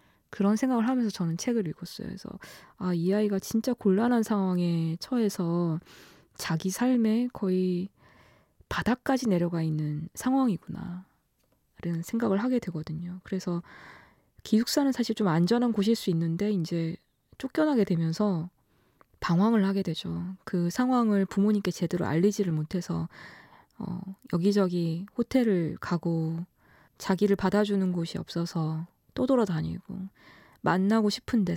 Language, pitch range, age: Korean, 170-210 Hz, 20-39